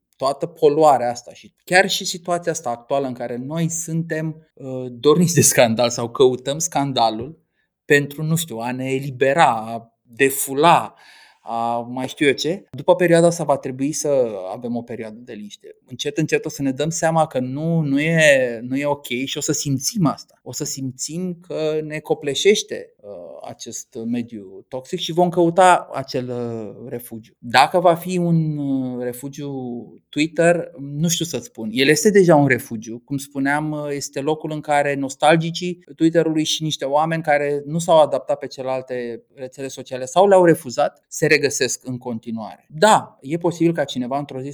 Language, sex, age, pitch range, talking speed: Romanian, male, 30-49, 120-155 Hz, 170 wpm